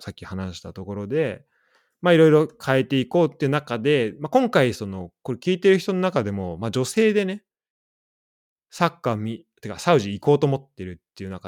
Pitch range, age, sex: 95-150 Hz, 20-39, male